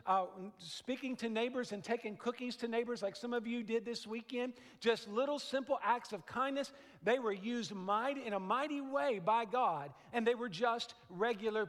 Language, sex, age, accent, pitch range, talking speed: English, male, 50-69, American, 210-255 Hz, 185 wpm